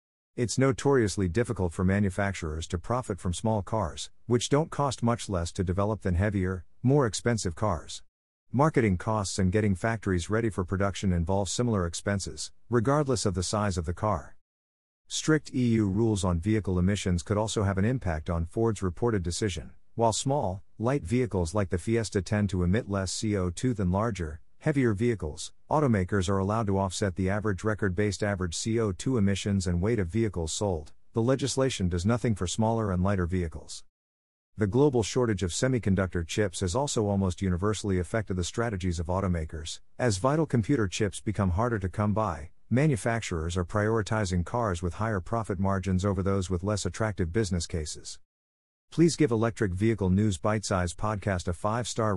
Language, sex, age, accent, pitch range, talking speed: English, male, 50-69, American, 90-115 Hz, 165 wpm